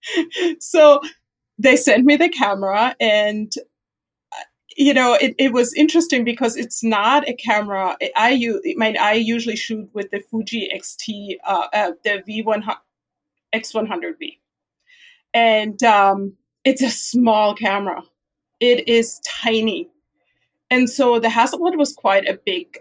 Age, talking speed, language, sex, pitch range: 30-49, 130 wpm, English, female, 215-285 Hz